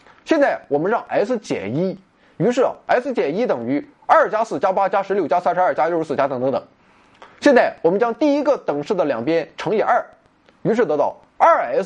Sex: male